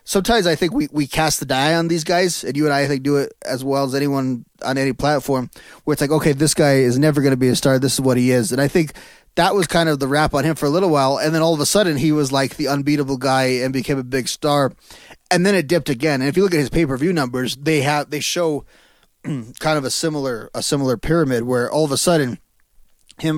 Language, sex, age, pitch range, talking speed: English, male, 20-39, 130-155 Hz, 275 wpm